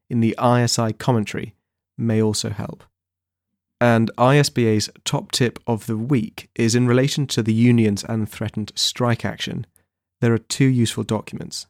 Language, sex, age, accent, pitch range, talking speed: English, male, 30-49, British, 110-125 Hz, 150 wpm